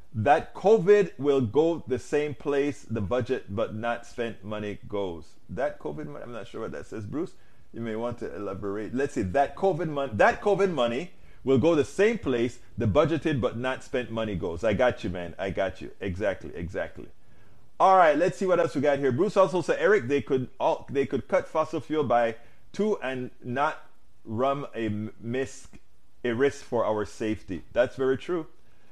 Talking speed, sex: 195 wpm, male